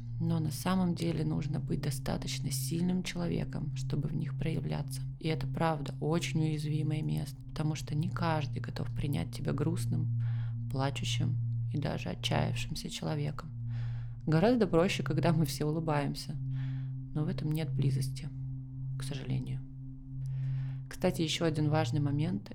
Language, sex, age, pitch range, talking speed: Russian, female, 20-39, 130-155 Hz, 135 wpm